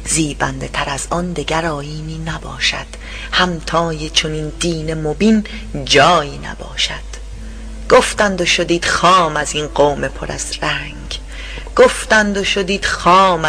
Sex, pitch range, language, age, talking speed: female, 150-180 Hz, Persian, 40-59, 125 wpm